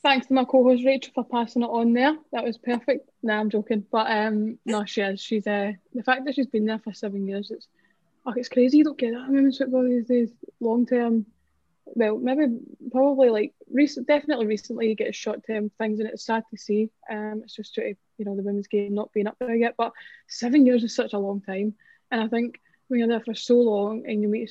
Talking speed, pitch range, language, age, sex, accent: 240 wpm, 220-260 Hz, English, 20-39, female, British